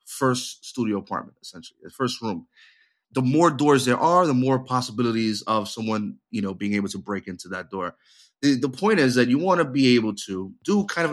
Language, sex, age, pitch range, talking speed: English, male, 30-49, 115-140 Hz, 215 wpm